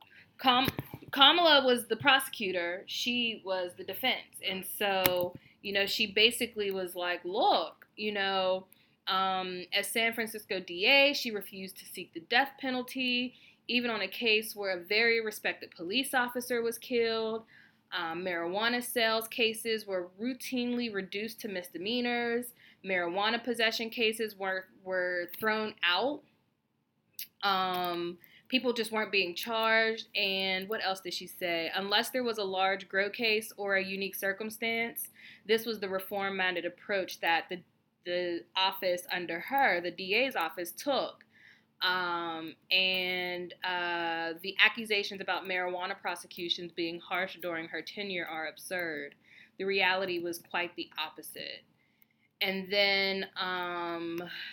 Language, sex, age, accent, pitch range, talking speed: English, female, 20-39, American, 180-225 Hz, 135 wpm